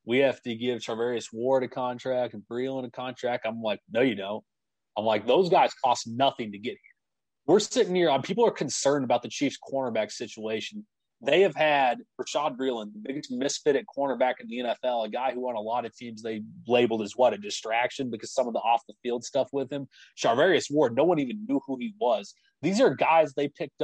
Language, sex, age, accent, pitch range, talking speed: English, male, 30-49, American, 115-140 Hz, 220 wpm